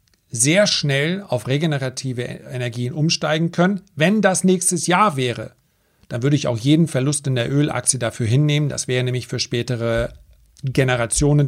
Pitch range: 125-155 Hz